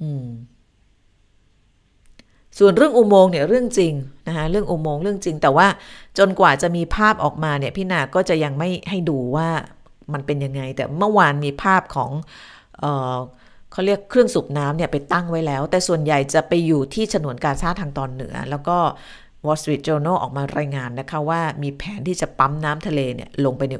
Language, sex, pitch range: Thai, female, 135-185 Hz